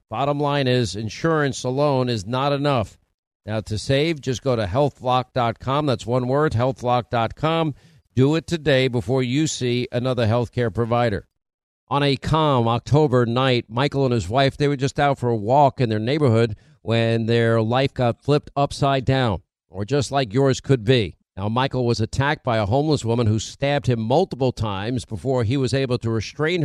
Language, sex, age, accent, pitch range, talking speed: English, male, 50-69, American, 120-140 Hz, 180 wpm